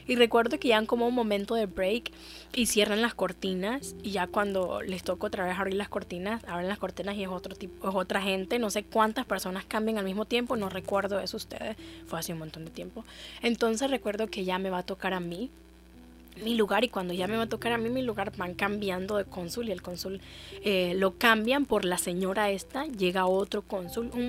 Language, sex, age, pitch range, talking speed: Spanish, female, 20-39, 185-225 Hz, 230 wpm